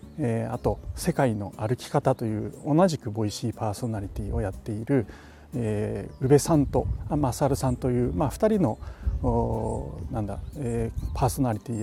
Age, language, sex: 40-59, Japanese, male